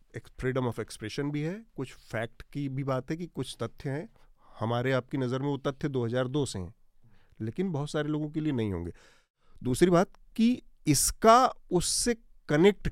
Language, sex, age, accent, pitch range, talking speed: Hindi, male, 40-59, native, 125-160 Hz, 175 wpm